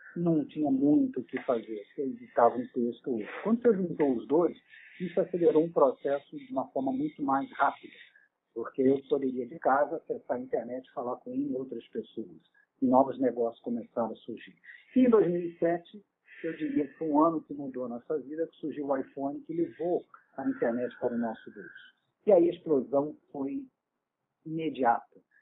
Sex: male